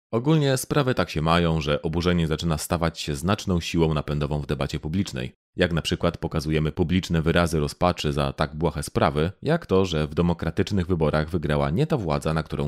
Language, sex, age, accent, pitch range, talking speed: Polish, male, 30-49, native, 75-110 Hz, 185 wpm